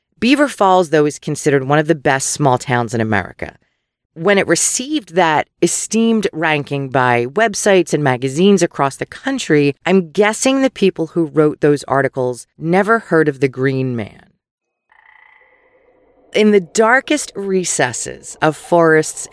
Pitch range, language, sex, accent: 140-210 Hz, English, female, American